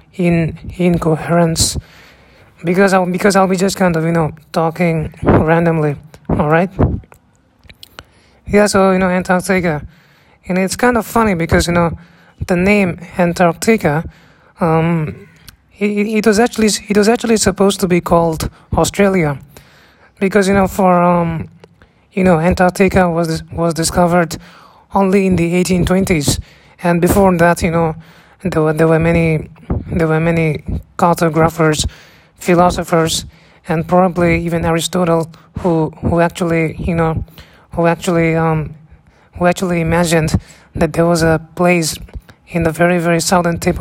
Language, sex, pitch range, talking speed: English, male, 160-180 Hz, 140 wpm